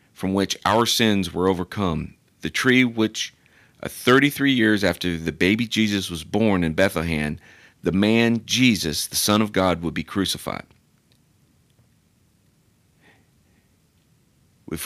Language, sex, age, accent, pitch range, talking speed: English, male, 40-59, American, 85-115 Hz, 125 wpm